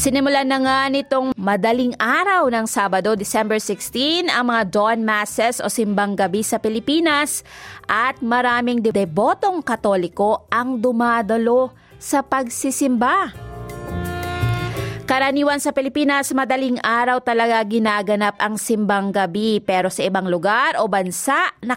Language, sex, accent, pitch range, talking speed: Filipino, female, native, 205-255 Hz, 120 wpm